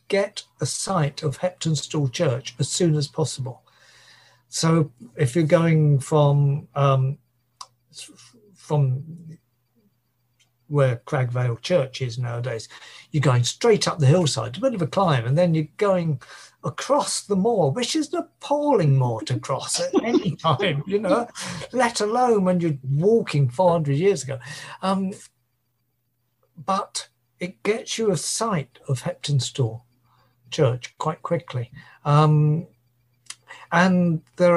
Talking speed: 130 wpm